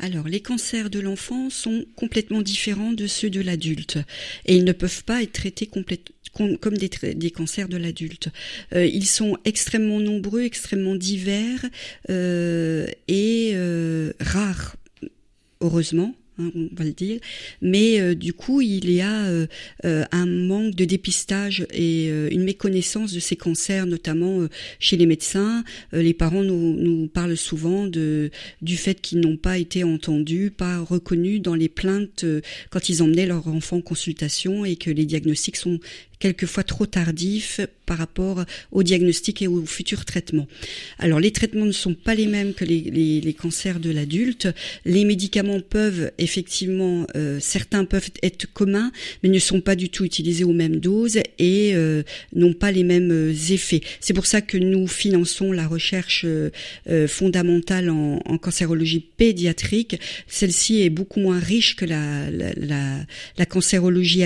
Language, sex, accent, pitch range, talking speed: French, female, French, 165-200 Hz, 170 wpm